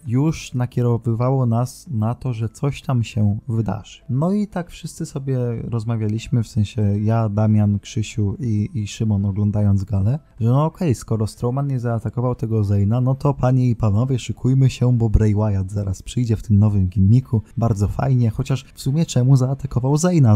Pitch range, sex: 105-130 Hz, male